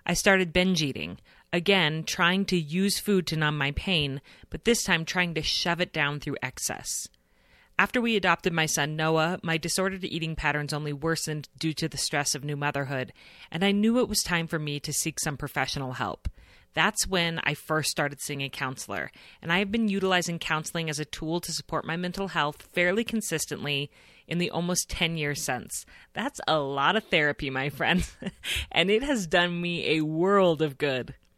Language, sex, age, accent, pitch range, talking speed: English, female, 30-49, American, 140-180 Hz, 195 wpm